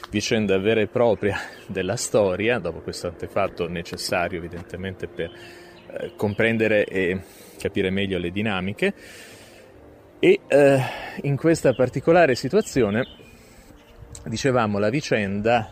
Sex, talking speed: male, 105 wpm